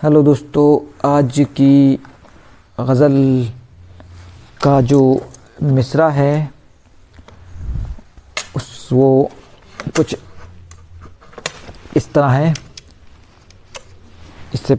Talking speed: 65 wpm